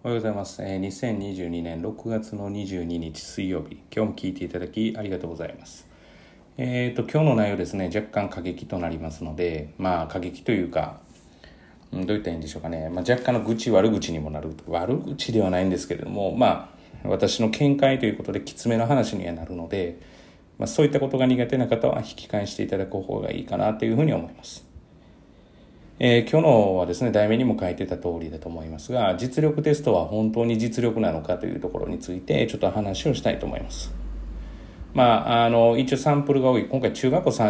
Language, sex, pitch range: Japanese, male, 85-125 Hz